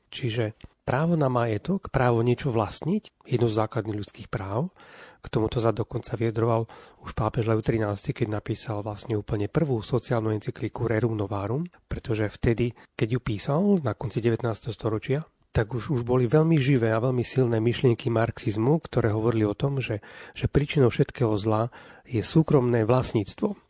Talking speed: 155 wpm